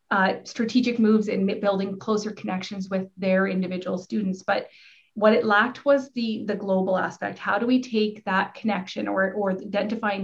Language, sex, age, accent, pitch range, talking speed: English, female, 30-49, American, 195-225 Hz, 170 wpm